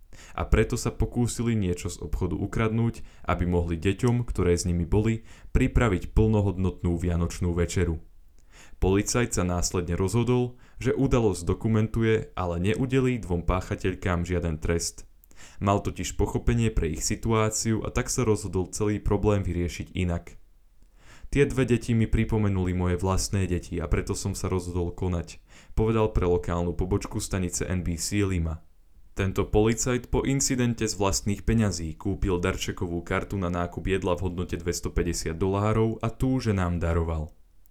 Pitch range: 85-110 Hz